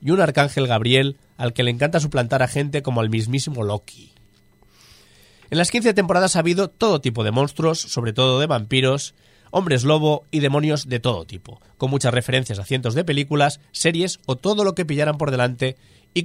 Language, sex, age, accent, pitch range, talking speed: Spanish, male, 30-49, Spanish, 120-150 Hz, 190 wpm